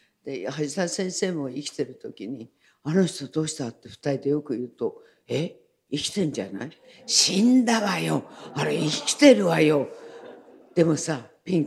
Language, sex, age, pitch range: Japanese, female, 60-79, 135-185 Hz